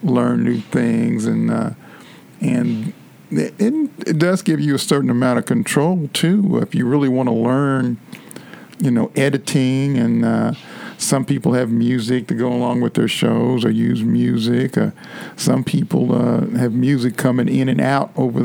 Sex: male